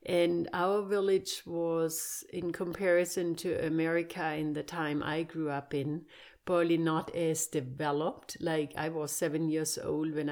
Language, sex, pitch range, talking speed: English, female, 155-190 Hz, 150 wpm